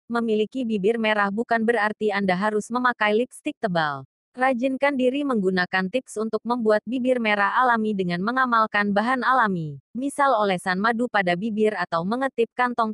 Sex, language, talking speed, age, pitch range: female, Indonesian, 145 wpm, 20-39, 195-245 Hz